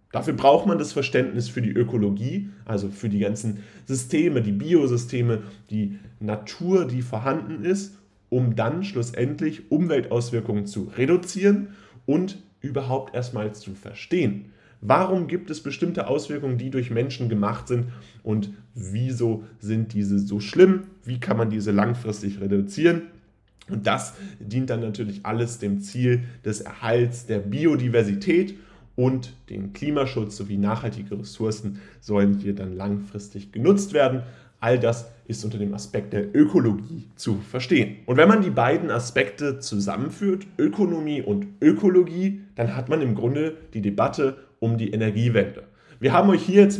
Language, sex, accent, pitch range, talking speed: German, male, German, 105-150 Hz, 145 wpm